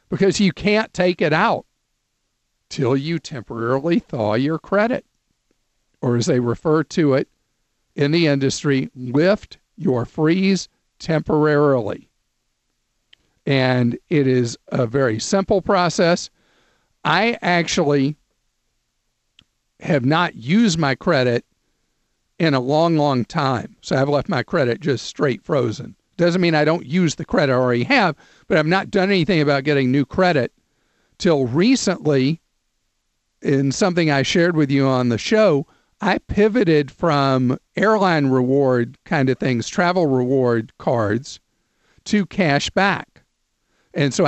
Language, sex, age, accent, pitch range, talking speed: English, male, 50-69, American, 135-180 Hz, 135 wpm